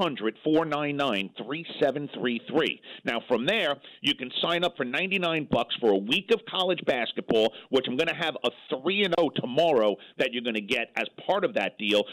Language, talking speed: English, 185 wpm